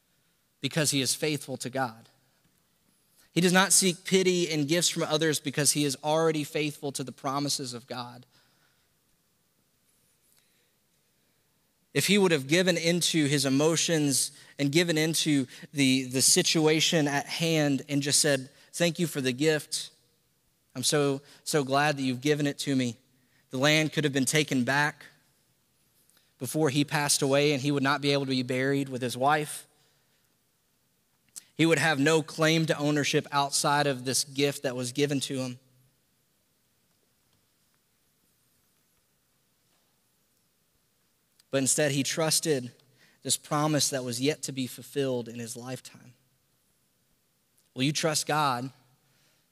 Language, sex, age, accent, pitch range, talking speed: English, male, 20-39, American, 130-155 Hz, 140 wpm